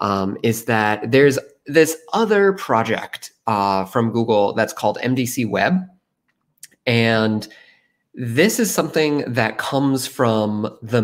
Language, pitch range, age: English, 100-130 Hz, 20-39